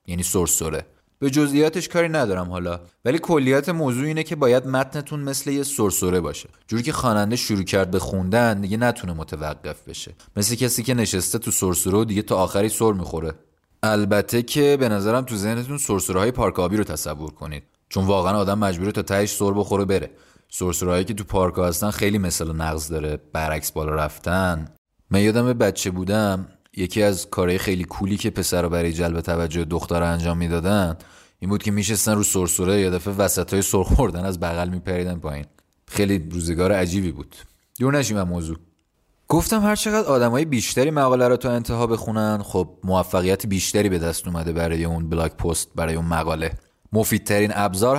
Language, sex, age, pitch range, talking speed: Persian, male, 30-49, 85-115 Hz, 175 wpm